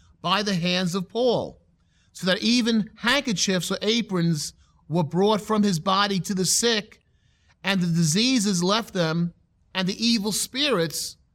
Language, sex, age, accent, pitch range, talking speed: English, male, 40-59, American, 145-200 Hz, 150 wpm